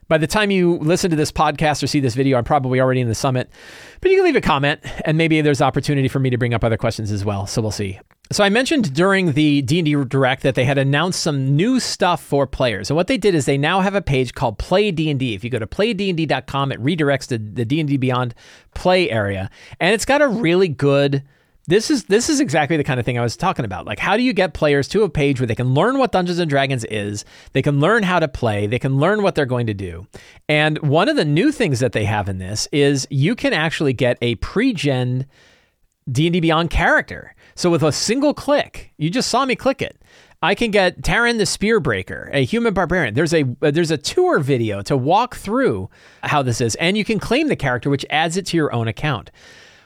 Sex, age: male, 40-59